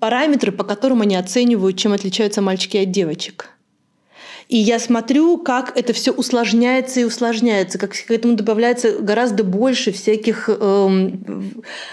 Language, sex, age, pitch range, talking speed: Russian, female, 30-49, 195-245 Hz, 145 wpm